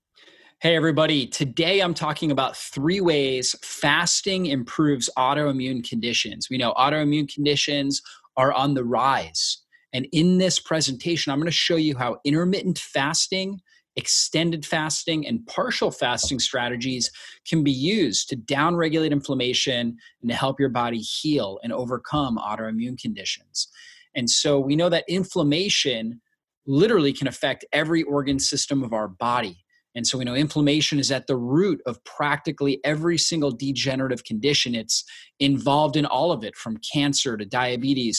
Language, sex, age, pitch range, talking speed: English, male, 30-49, 125-155 Hz, 150 wpm